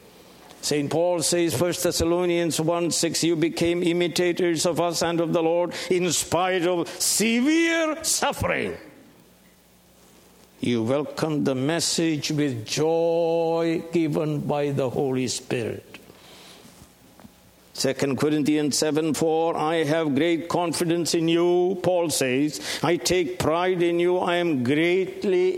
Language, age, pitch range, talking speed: English, 60-79, 150-175 Hz, 120 wpm